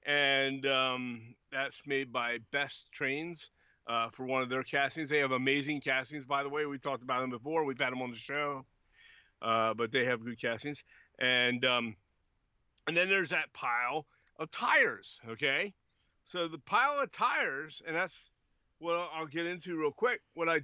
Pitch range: 130-165 Hz